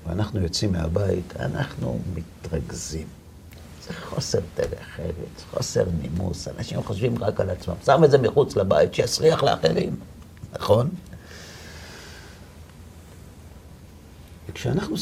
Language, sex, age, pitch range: Hebrew, male, 60-79, 80-125 Hz